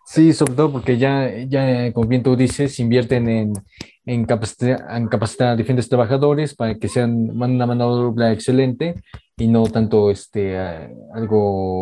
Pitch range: 105-125 Hz